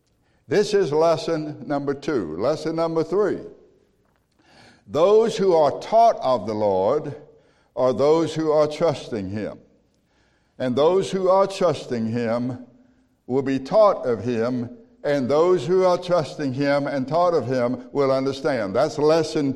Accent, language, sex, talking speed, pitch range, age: American, English, male, 140 wpm, 125-165 Hz, 60-79